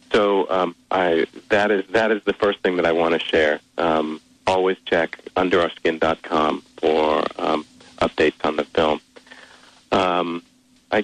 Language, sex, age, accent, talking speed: English, male, 40-59, American, 145 wpm